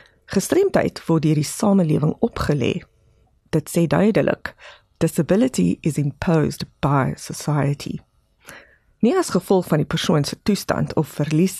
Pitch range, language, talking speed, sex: 150-210 Hz, English, 120 wpm, female